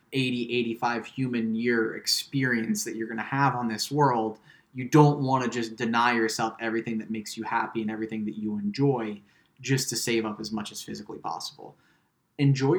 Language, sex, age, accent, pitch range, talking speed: English, male, 20-39, American, 115-135 Hz, 190 wpm